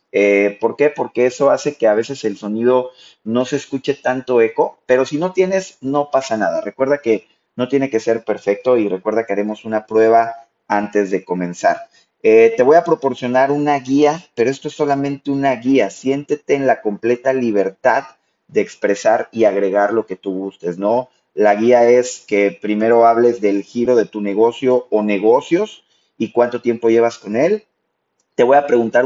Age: 30-49